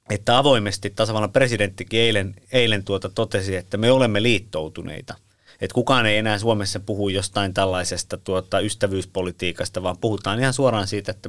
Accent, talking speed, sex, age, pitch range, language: native, 150 wpm, male, 30-49, 100-115 Hz, Finnish